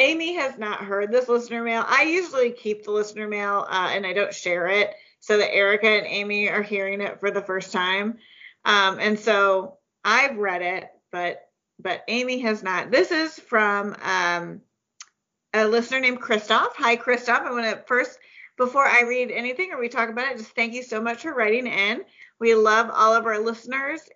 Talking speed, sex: 195 wpm, female